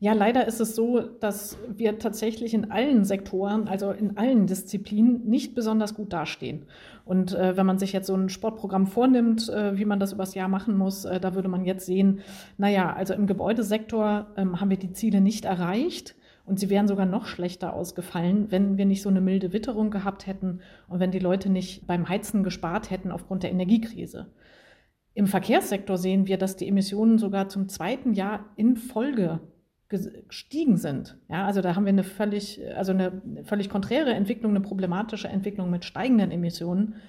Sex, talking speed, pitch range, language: female, 185 wpm, 185-215 Hz, German